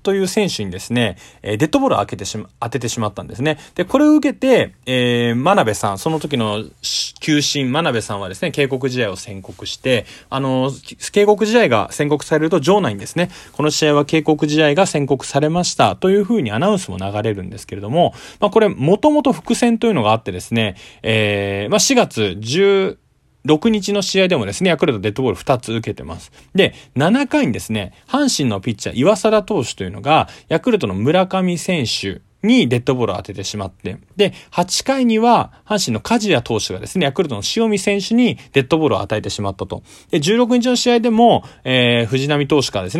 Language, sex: Japanese, male